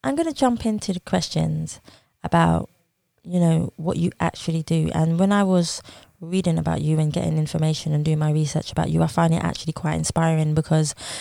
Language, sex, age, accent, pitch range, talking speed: English, female, 20-39, British, 150-170 Hz, 200 wpm